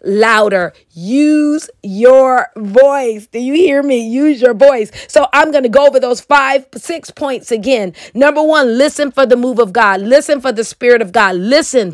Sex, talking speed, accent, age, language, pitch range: female, 180 wpm, American, 40-59, English, 200-260 Hz